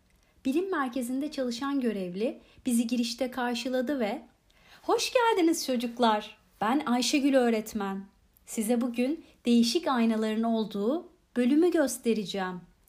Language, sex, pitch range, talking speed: Turkish, female, 230-370 Hz, 100 wpm